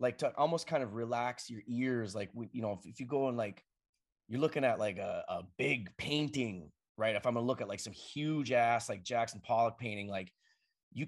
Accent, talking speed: American, 225 wpm